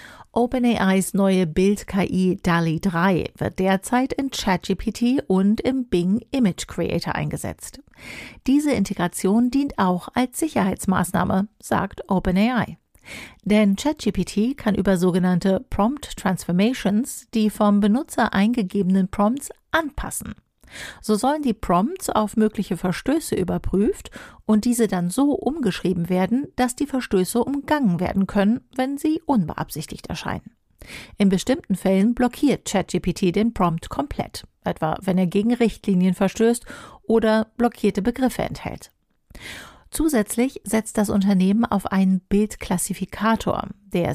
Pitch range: 190-240 Hz